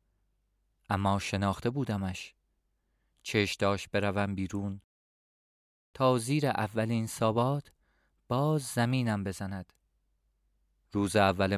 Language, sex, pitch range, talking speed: Persian, male, 90-130 Hz, 80 wpm